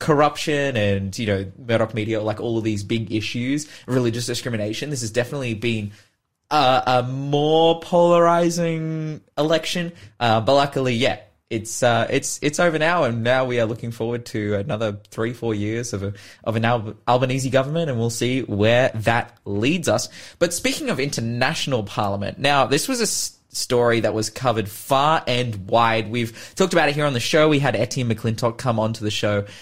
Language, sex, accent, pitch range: English, male, Australian, 110-135 Hz